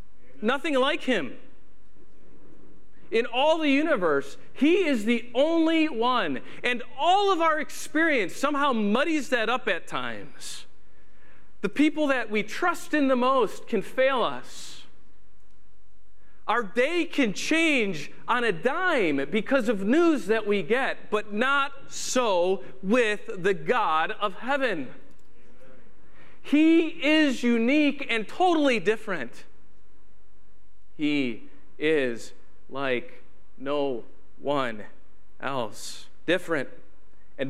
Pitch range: 175-285 Hz